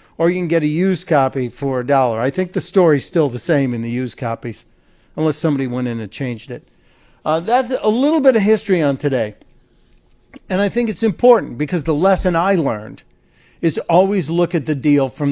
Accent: American